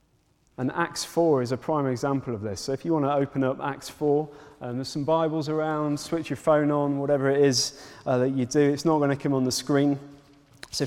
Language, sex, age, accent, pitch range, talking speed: English, male, 30-49, British, 130-155 Hz, 235 wpm